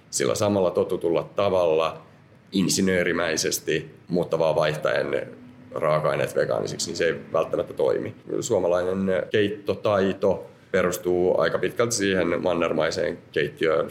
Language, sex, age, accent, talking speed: Finnish, male, 30-49, native, 90 wpm